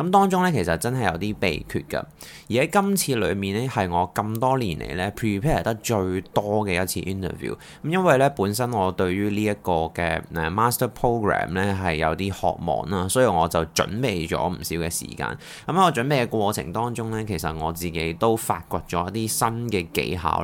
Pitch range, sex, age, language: 90-125 Hz, male, 20-39, Chinese